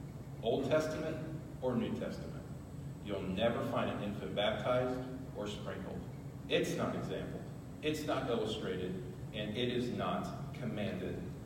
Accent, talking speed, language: American, 125 wpm, English